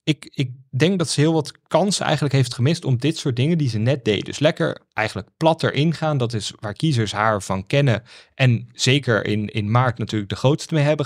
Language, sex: Dutch, male